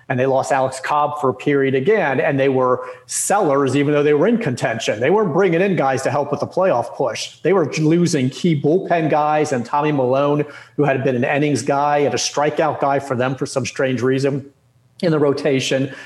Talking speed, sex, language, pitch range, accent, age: 215 wpm, male, English, 130-150 Hz, American, 40-59